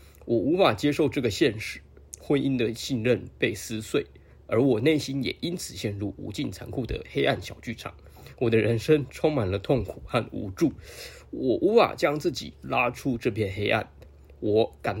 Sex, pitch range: male, 80-120 Hz